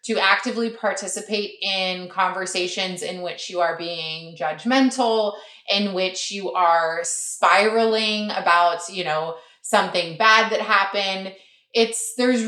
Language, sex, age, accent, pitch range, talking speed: English, female, 20-39, American, 185-235 Hz, 120 wpm